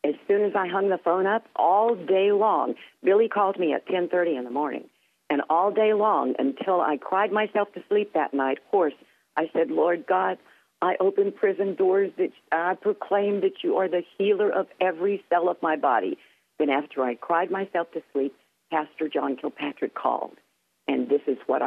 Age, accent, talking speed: 50-69, American, 190 wpm